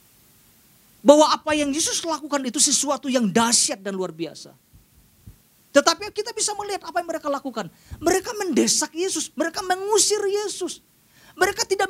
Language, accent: Indonesian, native